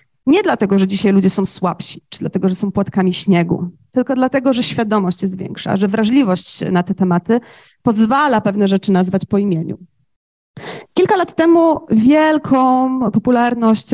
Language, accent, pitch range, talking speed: Polish, native, 185-260 Hz, 150 wpm